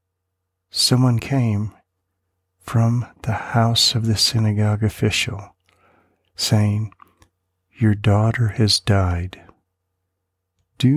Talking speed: 80 wpm